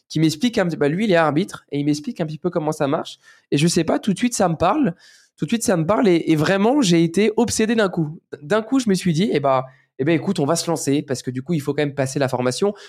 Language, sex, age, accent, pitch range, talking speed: French, male, 20-39, French, 135-175 Hz, 310 wpm